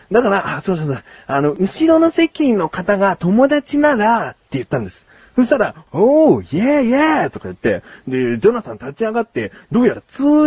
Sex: male